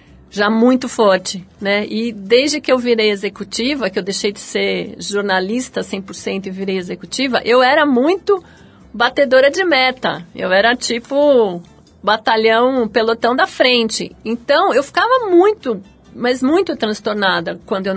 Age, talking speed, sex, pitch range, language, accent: 50-69, 140 wpm, female, 215-280 Hz, Portuguese, Brazilian